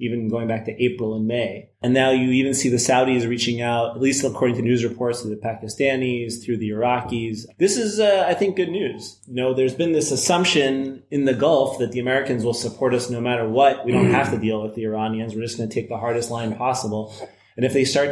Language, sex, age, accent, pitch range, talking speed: English, male, 30-49, American, 115-135 Hz, 240 wpm